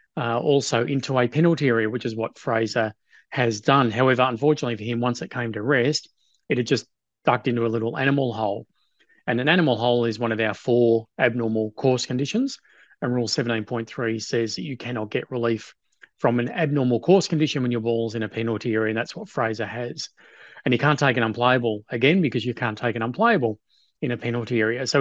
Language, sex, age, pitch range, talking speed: English, male, 30-49, 115-140 Hz, 205 wpm